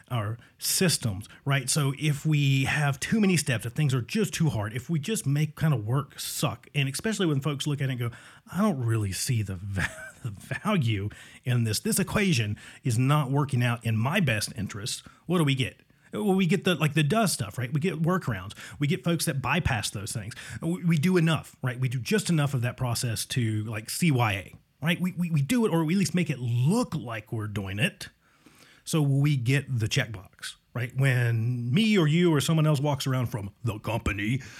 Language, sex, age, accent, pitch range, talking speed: English, male, 30-49, American, 120-165 Hz, 215 wpm